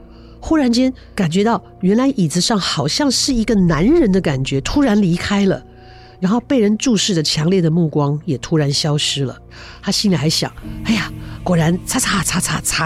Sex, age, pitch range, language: female, 50-69, 150-235 Hz, Chinese